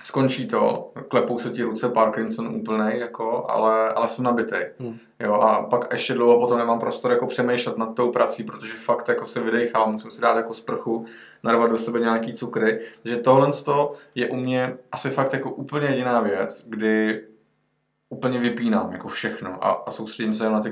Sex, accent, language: male, native, Czech